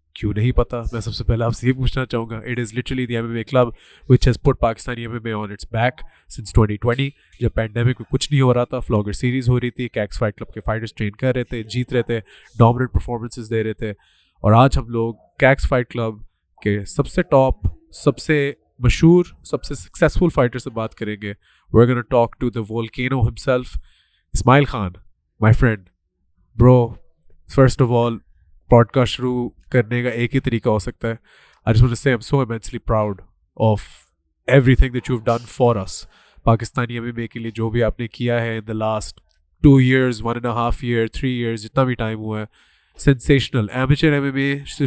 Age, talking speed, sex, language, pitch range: 20-39, 170 wpm, male, Urdu, 110-125 Hz